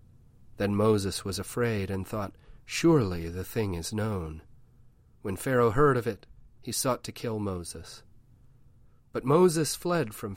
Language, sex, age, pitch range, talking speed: English, male, 40-59, 105-125 Hz, 145 wpm